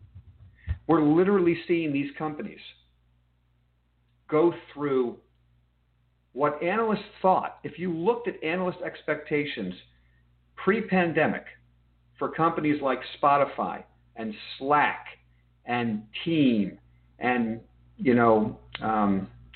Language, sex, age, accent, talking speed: English, male, 50-69, American, 90 wpm